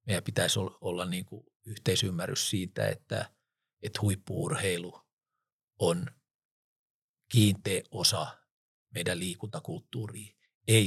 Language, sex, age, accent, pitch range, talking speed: Finnish, male, 50-69, native, 100-135 Hz, 90 wpm